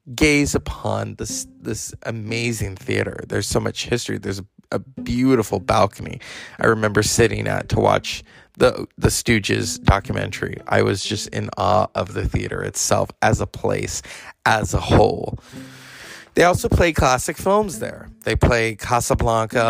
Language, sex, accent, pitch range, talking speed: English, male, American, 105-140 Hz, 150 wpm